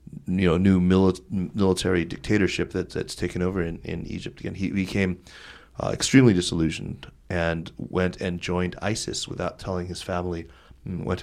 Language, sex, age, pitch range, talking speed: English, male, 30-49, 85-95 Hz, 155 wpm